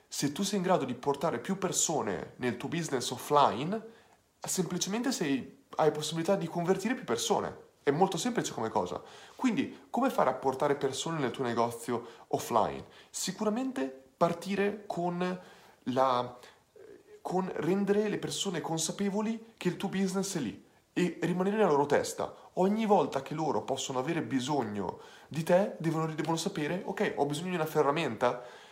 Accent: native